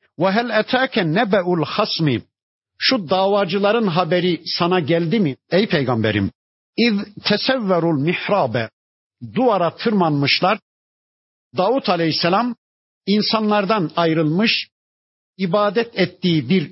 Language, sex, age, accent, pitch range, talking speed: Turkish, male, 50-69, native, 150-200 Hz, 90 wpm